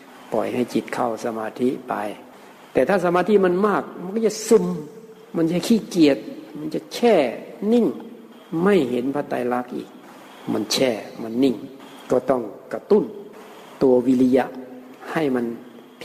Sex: male